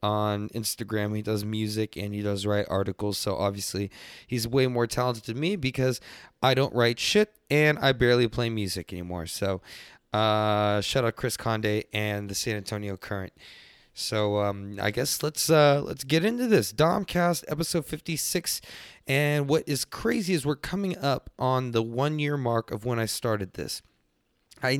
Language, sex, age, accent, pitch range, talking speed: English, male, 20-39, American, 105-140 Hz, 175 wpm